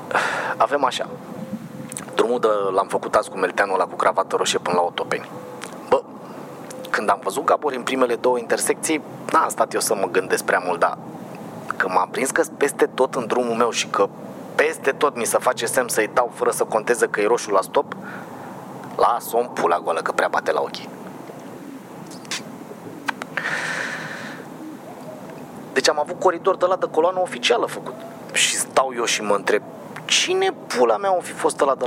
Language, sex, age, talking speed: Romanian, male, 30-49, 175 wpm